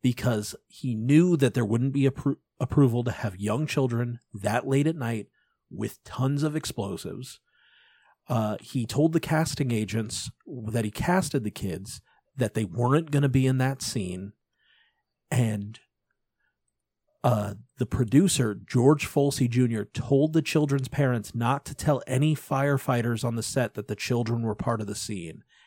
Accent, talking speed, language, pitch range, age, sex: American, 155 wpm, English, 115-150 Hz, 40-59, male